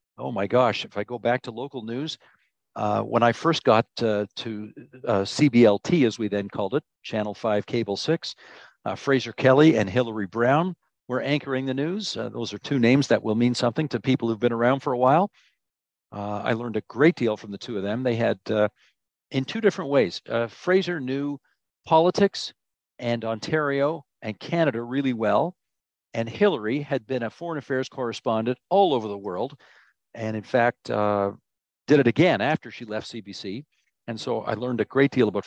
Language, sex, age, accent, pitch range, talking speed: English, male, 50-69, American, 115-150 Hz, 195 wpm